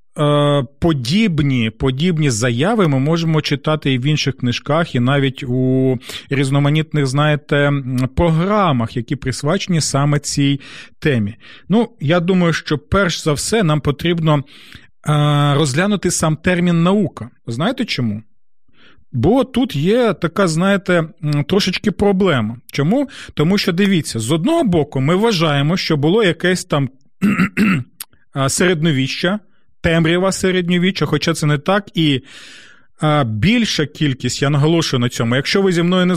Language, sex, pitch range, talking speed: Ukrainian, male, 140-185 Hz, 130 wpm